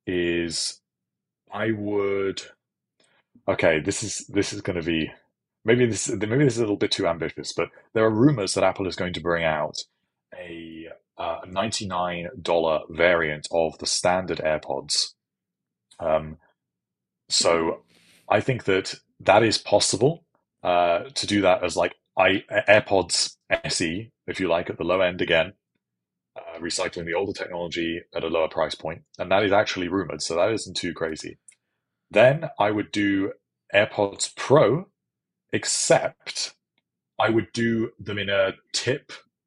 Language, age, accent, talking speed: English, 30-49, British, 150 wpm